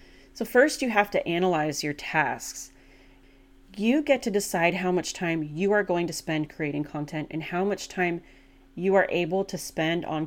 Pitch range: 150-195 Hz